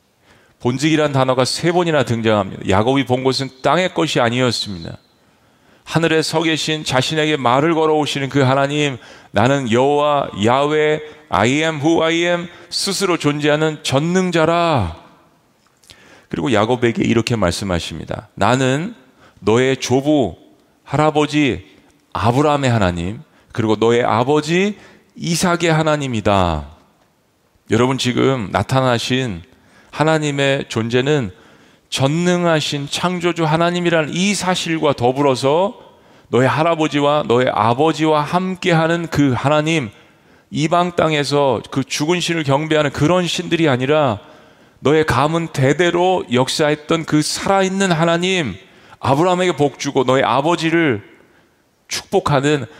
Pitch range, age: 125-165 Hz, 40-59